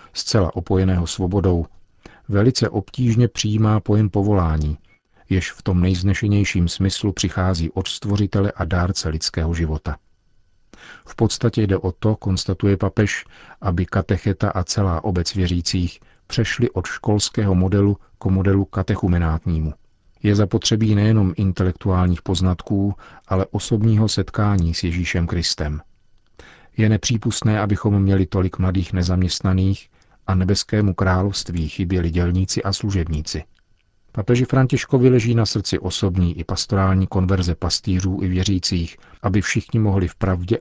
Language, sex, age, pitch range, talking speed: Czech, male, 40-59, 90-105 Hz, 120 wpm